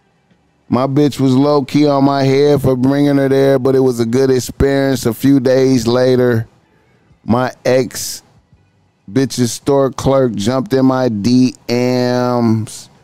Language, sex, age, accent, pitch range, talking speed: English, male, 30-49, American, 110-140 Hz, 135 wpm